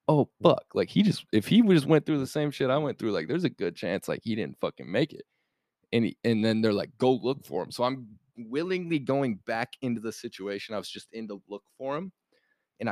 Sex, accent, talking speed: male, American, 245 wpm